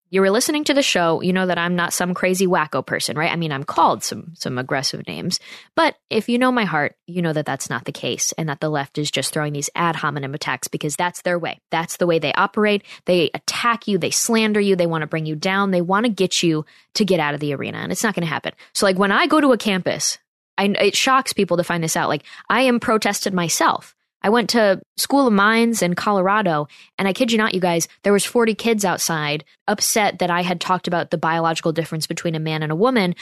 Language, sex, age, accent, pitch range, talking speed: English, female, 20-39, American, 160-200 Hz, 255 wpm